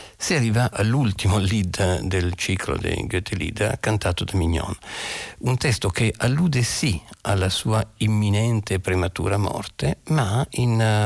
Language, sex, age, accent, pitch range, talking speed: Italian, male, 50-69, native, 100-125 Hz, 125 wpm